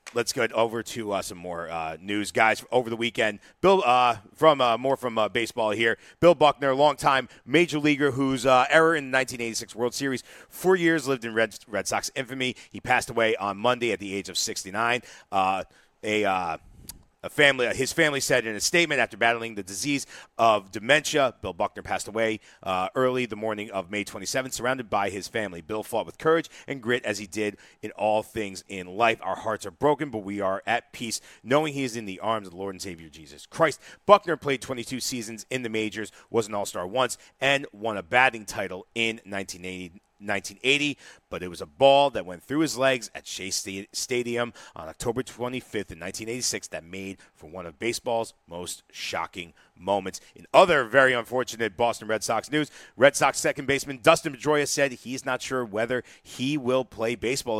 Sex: male